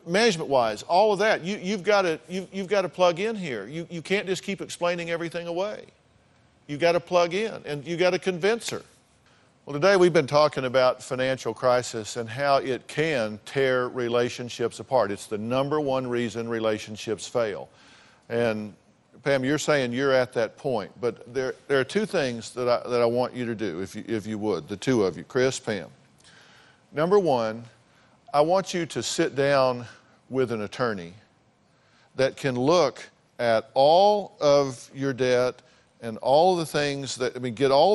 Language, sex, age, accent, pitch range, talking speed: English, male, 50-69, American, 115-150 Hz, 185 wpm